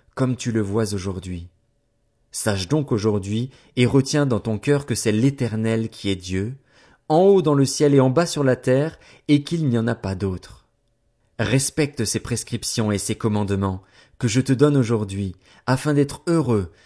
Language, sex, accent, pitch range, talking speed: French, male, French, 110-140 Hz, 180 wpm